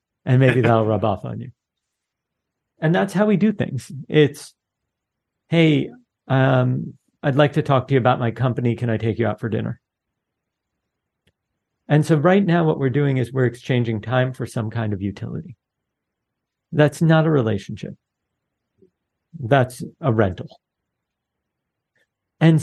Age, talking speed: 50-69, 150 wpm